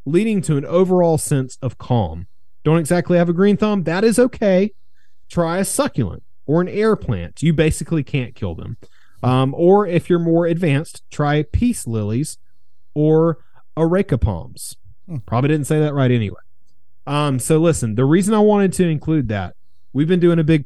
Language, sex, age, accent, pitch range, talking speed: English, male, 30-49, American, 115-165 Hz, 175 wpm